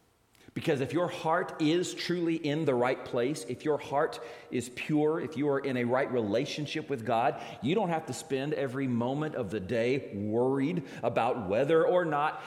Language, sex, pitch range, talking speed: English, male, 125-200 Hz, 190 wpm